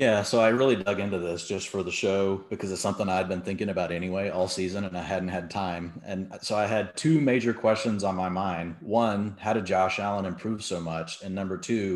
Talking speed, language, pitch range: 235 wpm, English, 95-110 Hz